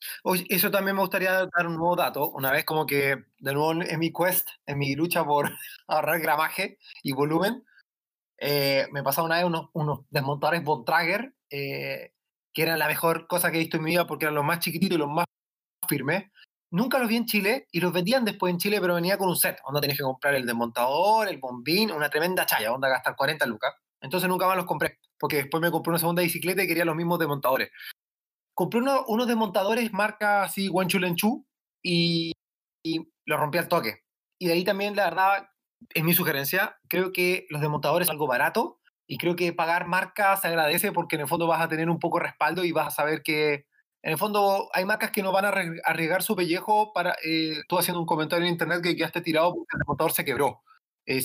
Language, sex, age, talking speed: Spanish, male, 20-39, 220 wpm